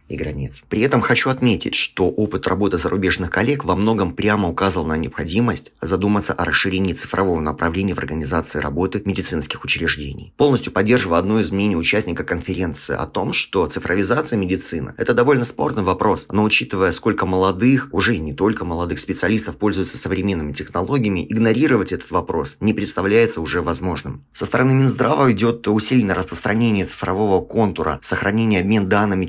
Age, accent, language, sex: 30-49, native, Russian, male